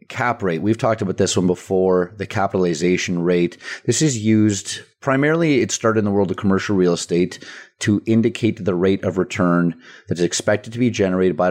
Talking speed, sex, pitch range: 195 wpm, male, 90-105 Hz